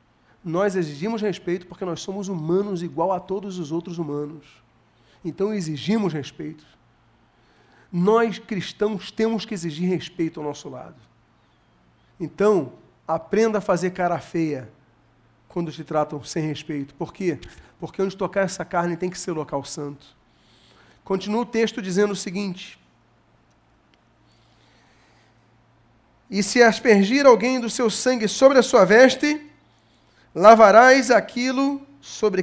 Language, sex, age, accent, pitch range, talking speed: Portuguese, male, 40-59, Brazilian, 145-210 Hz, 125 wpm